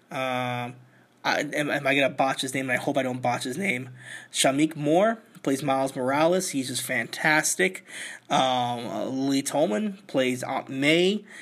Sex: male